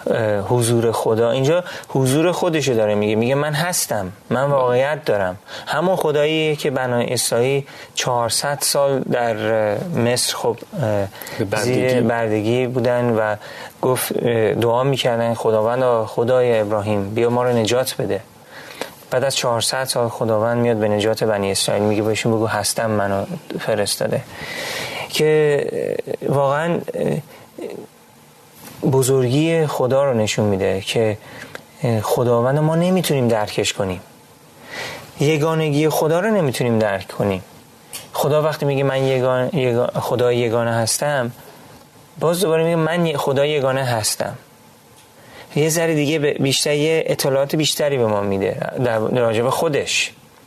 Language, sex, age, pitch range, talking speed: Persian, male, 30-49, 115-150 Hz, 120 wpm